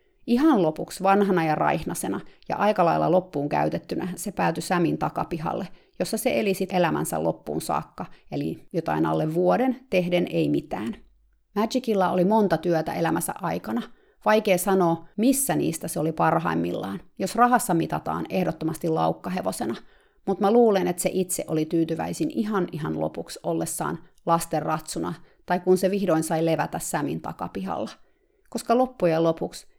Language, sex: Finnish, female